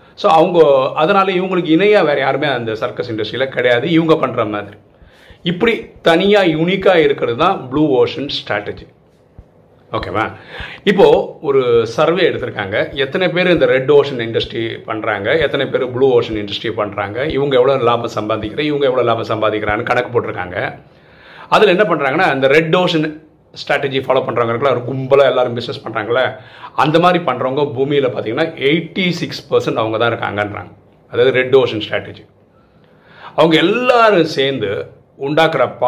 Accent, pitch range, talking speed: native, 120-195 Hz, 140 wpm